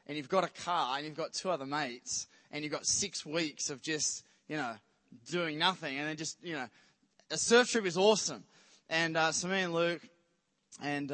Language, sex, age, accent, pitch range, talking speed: English, male, 20-39, Australian, 140-195 Hz, 210 wpm